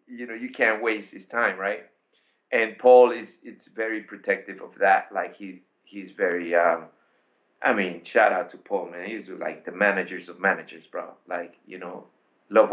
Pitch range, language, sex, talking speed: 100-110 Hz, English, male, 185 wpm